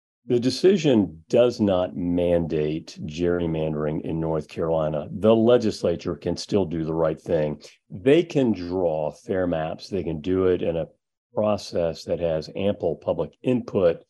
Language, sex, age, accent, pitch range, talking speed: English, male, 40-59, American, 85-110 Hz, 145 wpm